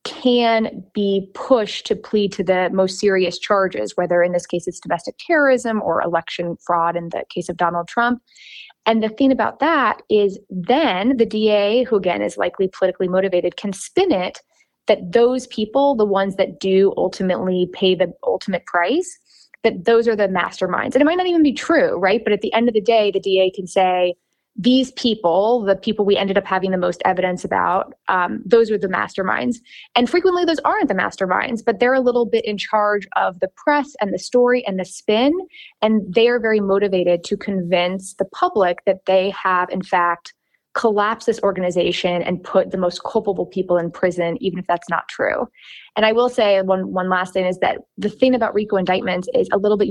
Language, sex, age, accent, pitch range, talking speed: English, female, 20-39, American, 180-230 Hz, 200 wpm